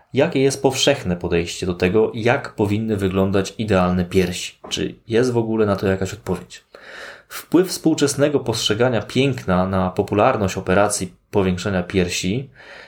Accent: native